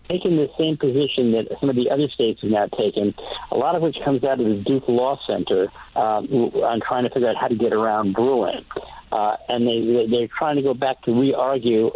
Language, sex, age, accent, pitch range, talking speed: English, male, 60-79, American, 110-135 Hz, 225 wpm